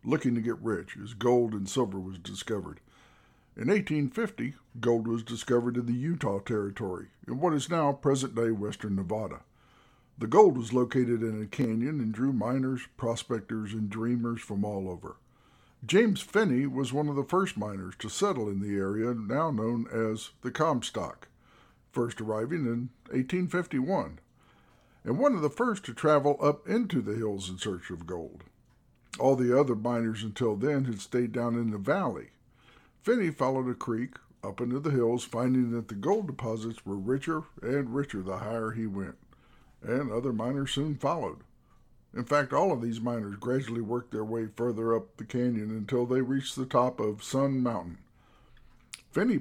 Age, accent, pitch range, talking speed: 60-79, American, 110-135 Hz, 170 wpm